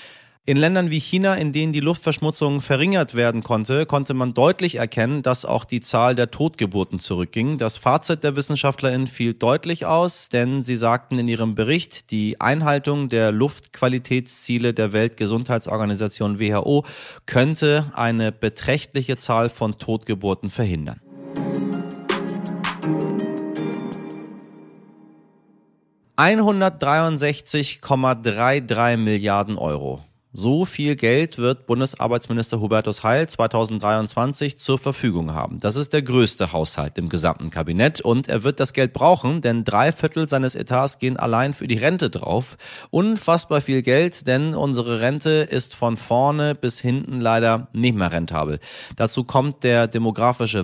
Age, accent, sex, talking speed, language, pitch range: 30-49, German, male, 125 wpm, German, 110-145 Hz